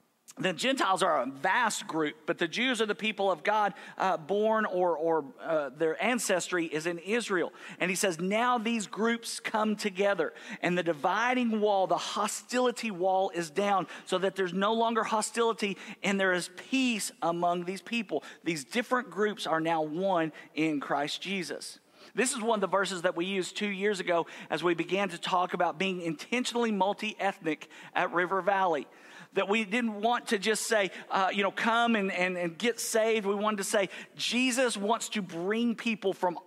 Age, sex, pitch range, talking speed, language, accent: 50-69, male, 175-215 Hz, 185 wpm, English, American